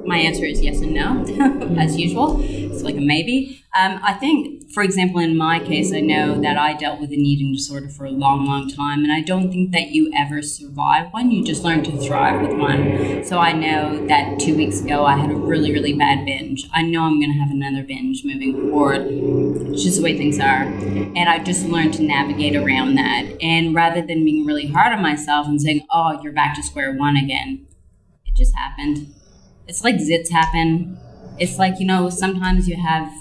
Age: 20-39